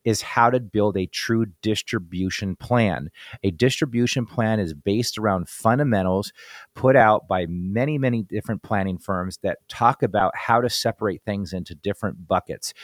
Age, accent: 40-59, American